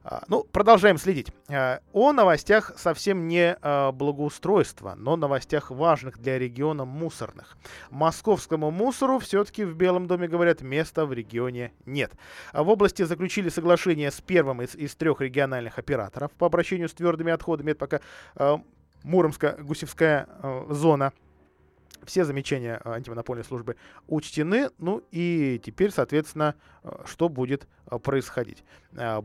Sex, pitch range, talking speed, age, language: male, 120-165 Hz, 120 wpm, 20-39, Russian